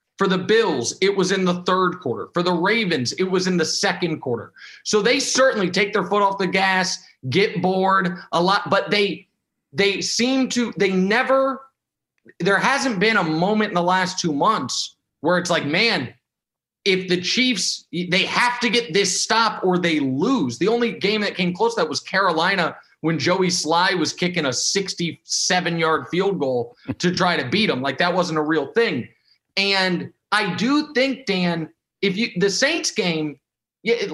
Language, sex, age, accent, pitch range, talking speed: English, male, 30-49, American, 160-210 Hz, 190 wpm